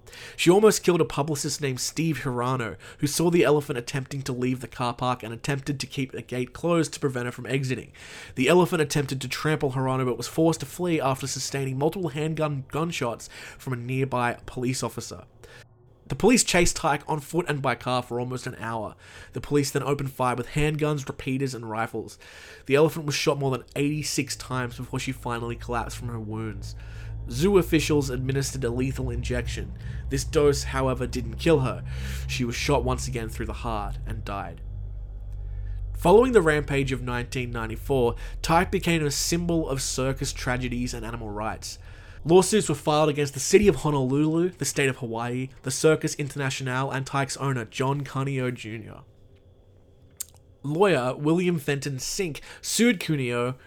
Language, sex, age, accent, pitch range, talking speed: English, male, 20-39, Australian, 120-150 Hz, 170 wpm